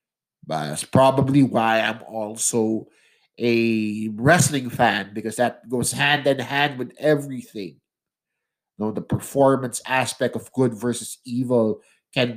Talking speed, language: 125 wpm, English